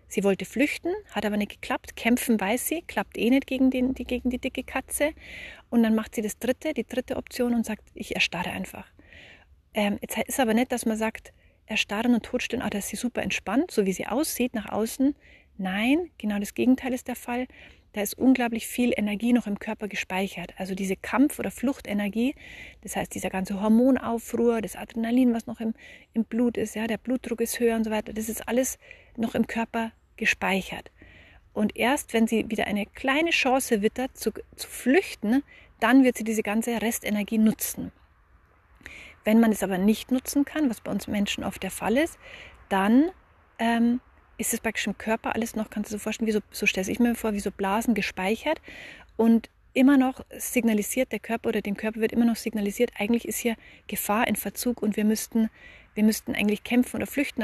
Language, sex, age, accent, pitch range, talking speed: German, female, 30-49, German, 210-250 Hz, 200 wpm